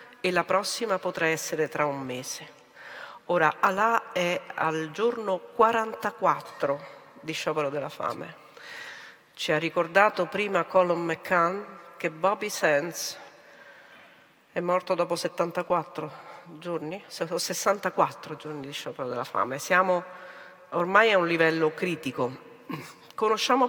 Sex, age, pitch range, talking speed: female, 50-69, 160-205 Hz, 115 wpm